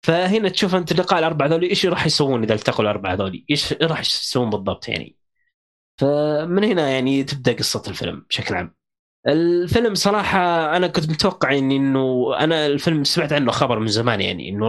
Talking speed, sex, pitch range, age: 170 wpm, male, 120-160 Hz, 20-39